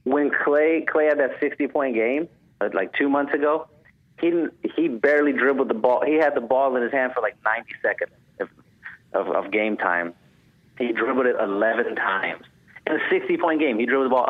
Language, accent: English, American